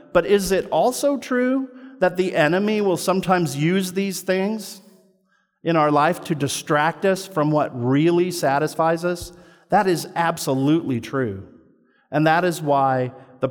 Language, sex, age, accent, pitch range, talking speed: English, male, 50-69, American, 130-180 Hz, 145 wpm